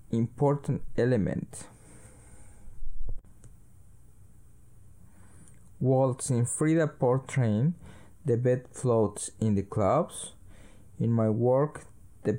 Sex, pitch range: male, 110-135 Hz